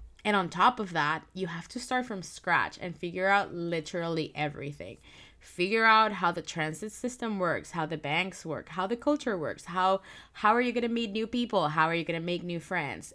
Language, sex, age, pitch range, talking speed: English, female, 20-39, 160-210 Hz, 210 wpm